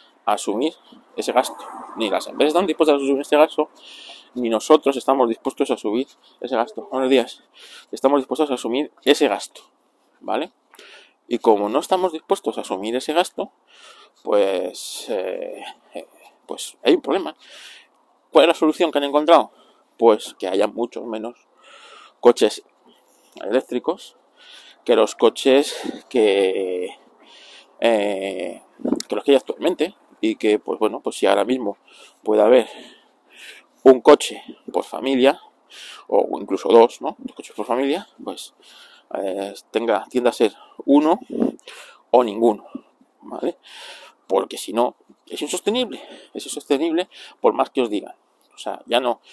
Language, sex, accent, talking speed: Spanish, male, Spanish, 140 wpm